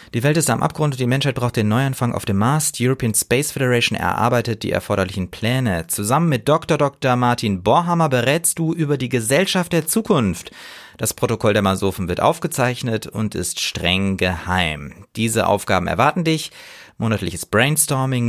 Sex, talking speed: male, 165 wpm